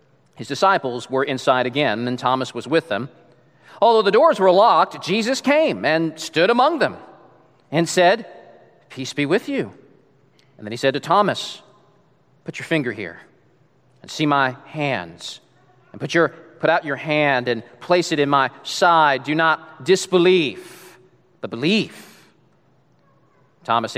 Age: 40-59